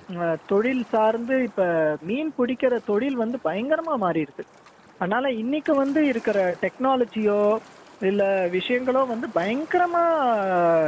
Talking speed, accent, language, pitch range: 100 wpm, native, Tamil, 180-255 Hz